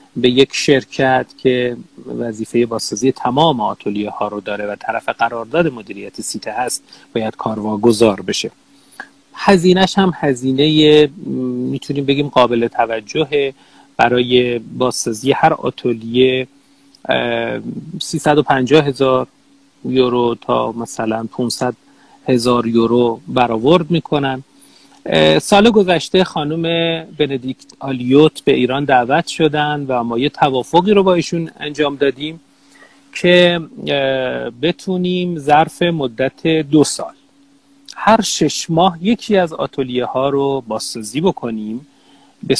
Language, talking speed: Persian, 110 wpm